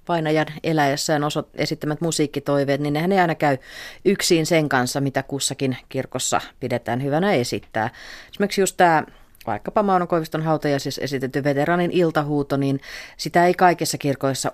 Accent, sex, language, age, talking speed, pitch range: native, female, Finnish, 30-49, 135 wpm, 130-165 Hz